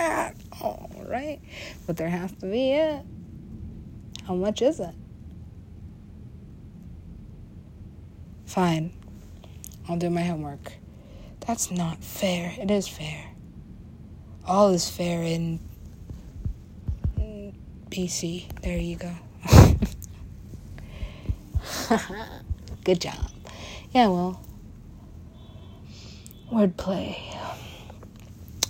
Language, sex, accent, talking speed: English, female, American, 75 wpm